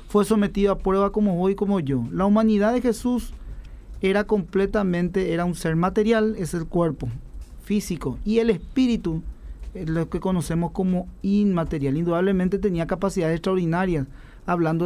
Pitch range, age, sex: 170-210 Hz, 40-59, male